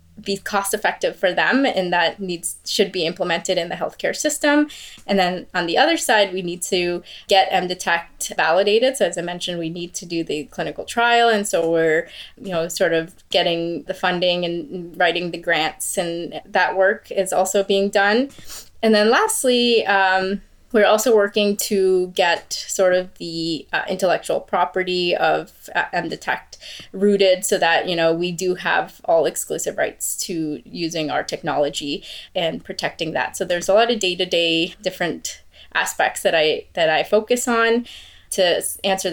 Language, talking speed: English, 175 wpm